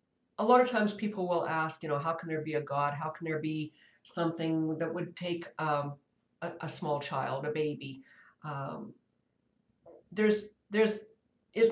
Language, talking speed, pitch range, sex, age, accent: English, 175 wpm, 155-190 Hz, female, 60-79, American